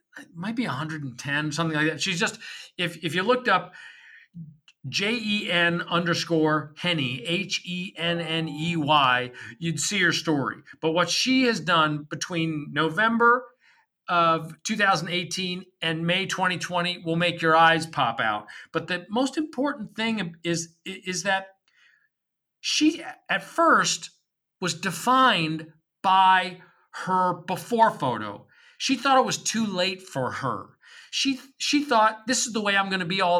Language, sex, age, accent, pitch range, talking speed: English, male, 40-59, American, 160-220 Hz, 150 wpm